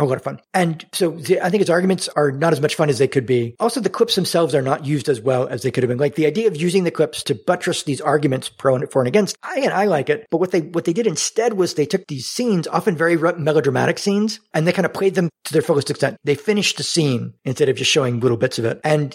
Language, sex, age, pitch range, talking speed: English, male, 50-69, 135-175 Hz, 290 wpm